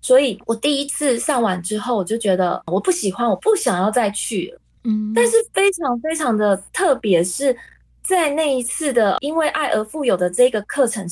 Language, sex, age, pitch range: Chinese, female, 20-39, 205-290 Hz